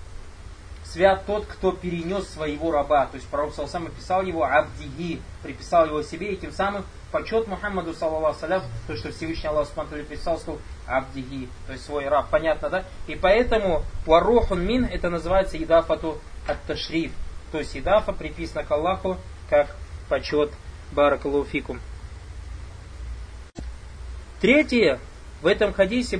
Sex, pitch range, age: male, 150-170 Hz, 20-39